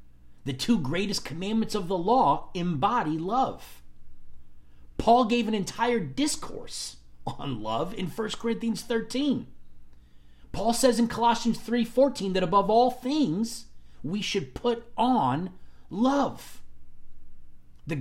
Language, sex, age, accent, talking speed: English, male, 40-59, American, 120 wpm